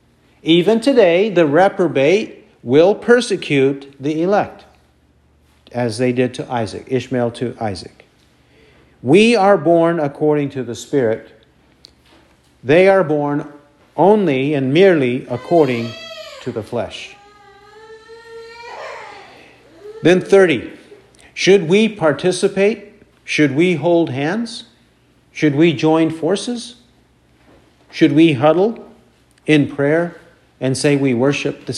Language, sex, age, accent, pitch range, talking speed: English, male, 50-69, American, 125-190 Hz, 105 wpm